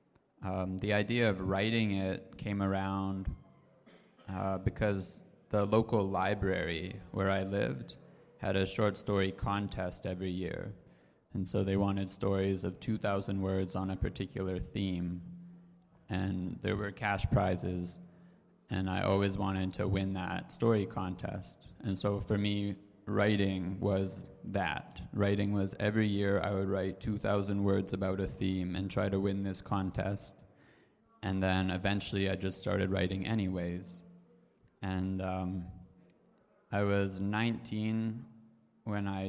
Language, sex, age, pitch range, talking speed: Italian, male, 20-39, 95-105 Hz, 135 wpm